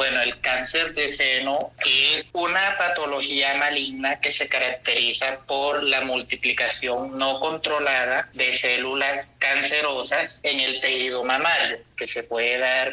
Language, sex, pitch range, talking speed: Spanish, male, 135-155 Hz, 130 wpm